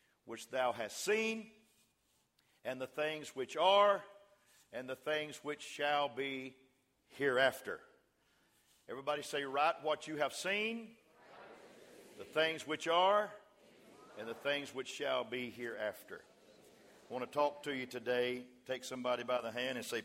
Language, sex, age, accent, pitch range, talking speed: English, male, 50-69, American, 125-195 Hz, 145 wpm